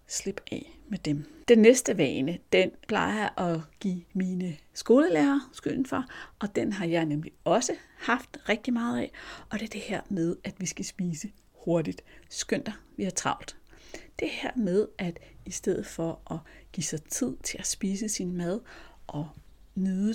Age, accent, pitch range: 60-79, native, 170-225 Hz